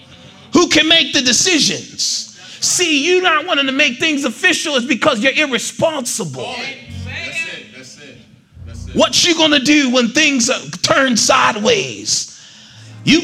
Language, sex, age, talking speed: English, male, 30-49, 120 wpm